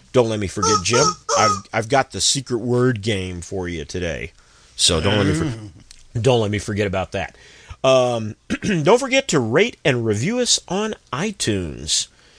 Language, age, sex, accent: English, 40-59, male, American